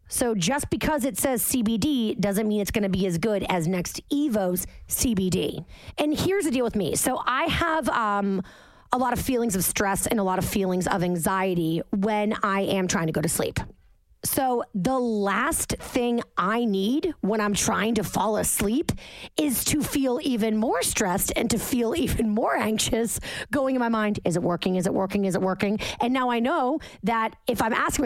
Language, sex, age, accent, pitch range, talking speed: English, female, 30-49, American, 195-255 Hz, 200 wpm